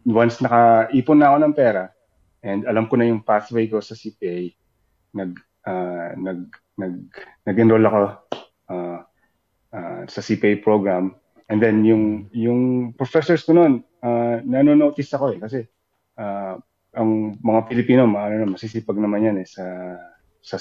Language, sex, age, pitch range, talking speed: Filipino, male, 20-39, 95-115 Hz, 135 wpm